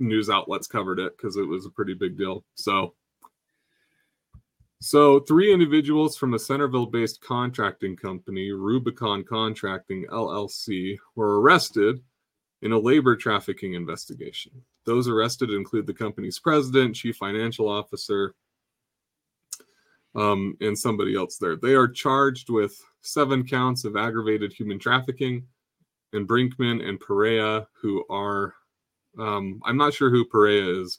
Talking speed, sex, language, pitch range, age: 130 wpm, male, English, 105-125 Hz, 30-49